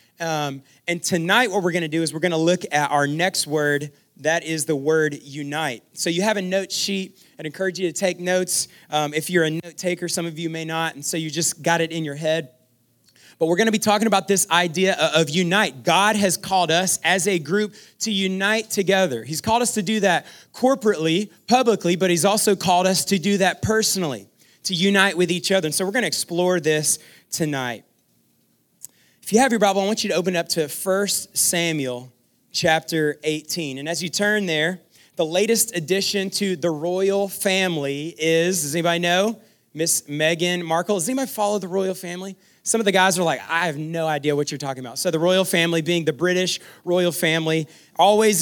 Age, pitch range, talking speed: 30-49, 160-200 Hz, 205 wpm